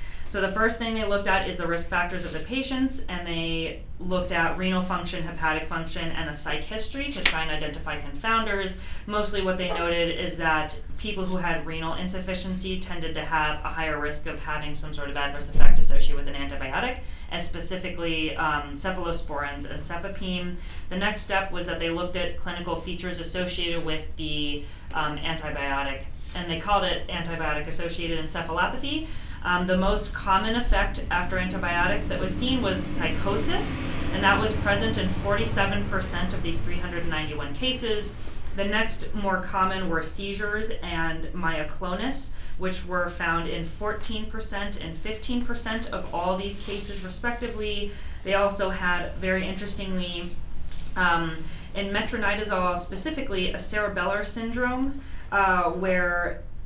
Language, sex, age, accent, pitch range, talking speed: English, female, 30-49, American, 165-200 Hz, 150 wpm